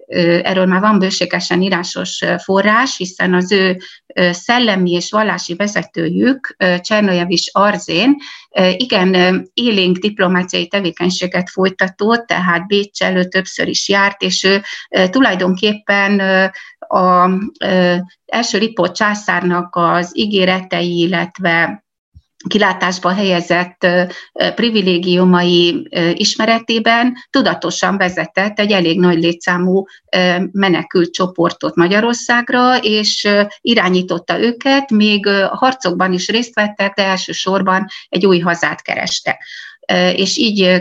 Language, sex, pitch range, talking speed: Hungarian, female, 175-205 Hz, 105 wpm